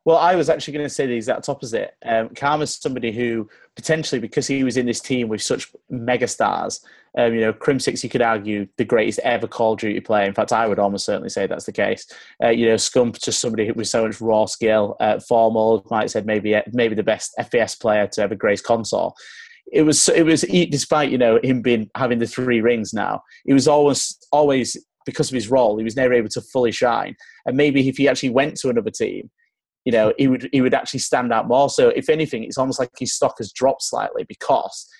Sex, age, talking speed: male, 30-49, 235 wpm